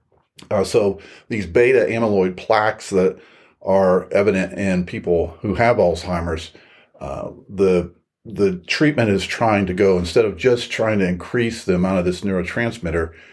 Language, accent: English, American